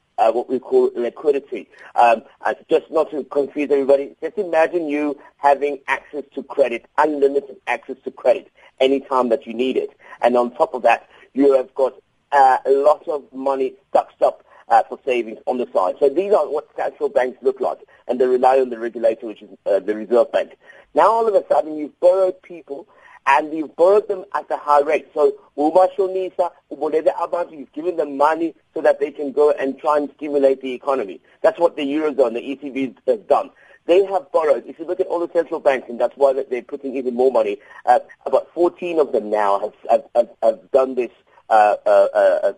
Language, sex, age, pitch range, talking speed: English, male, 50-69, 135-180 Hz, 205 wpm